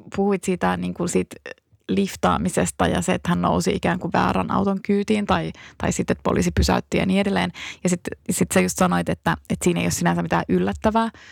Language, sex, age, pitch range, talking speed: Finnish, female, 20-39, 180-215 Hz, 205 wpm